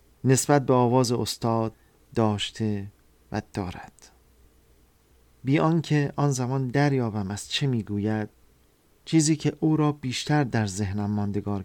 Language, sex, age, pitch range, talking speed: Persian, male, 40-59, 105-130 Hz, 120 wpm